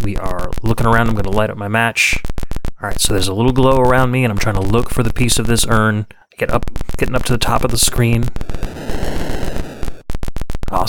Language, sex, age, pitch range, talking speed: English, male, 30-49, 95-115 Hz, 230 wpm